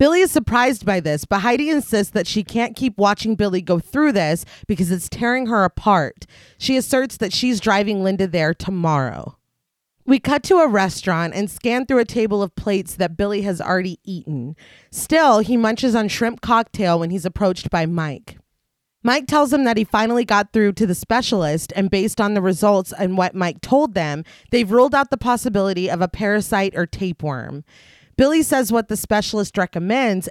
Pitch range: 180-240 Hz